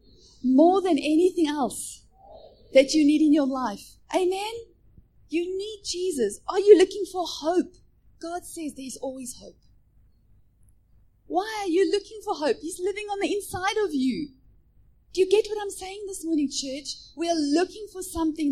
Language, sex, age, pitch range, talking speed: English, female, 30-49, 270-365 Hz, 165 wpm